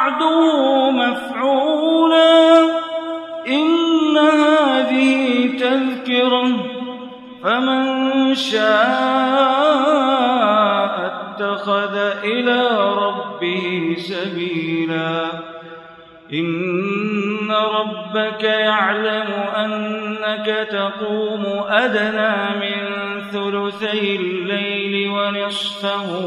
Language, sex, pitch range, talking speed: Arabic, male, 200-245 Hz, 50 wpm